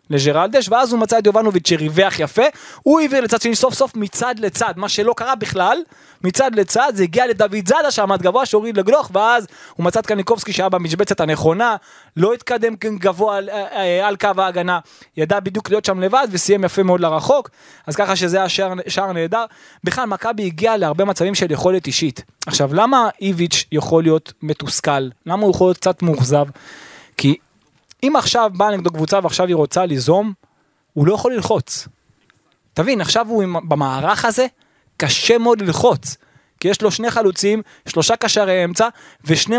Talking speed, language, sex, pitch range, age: 155 wpm, Hebrew, male, 170-225 Hz, 20-39